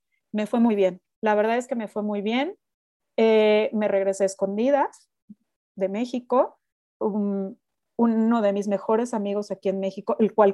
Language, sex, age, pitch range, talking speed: Spanish, female, 30-49, 200-250 Hz, 170 wpm